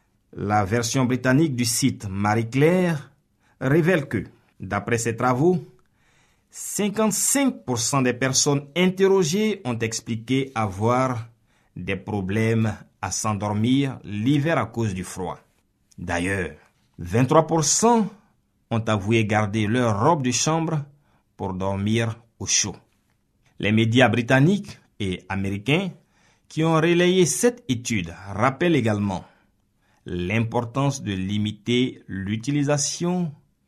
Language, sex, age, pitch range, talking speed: French, male, 50-69, 100-145 Hz, 100 wpm